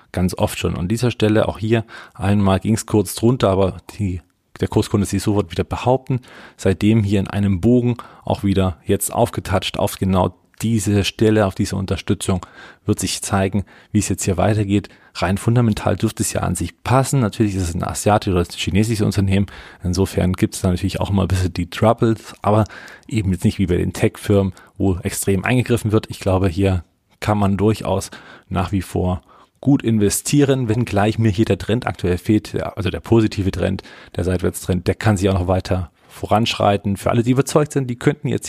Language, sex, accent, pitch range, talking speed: German, male, German, 95-110 Hz, 195 wpm